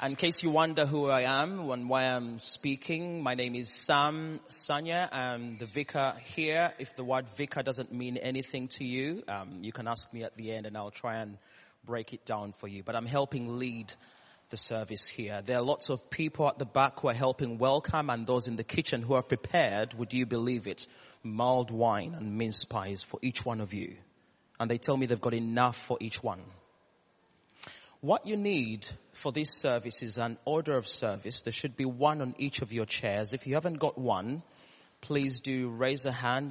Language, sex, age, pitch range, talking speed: English, male, 30-49, 115-145 Hz, 210 wpm